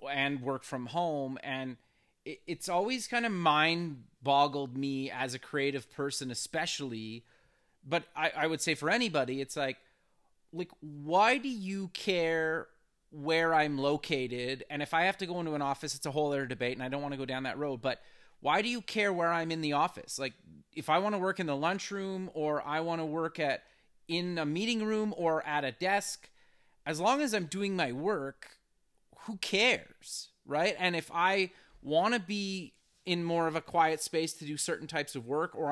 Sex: male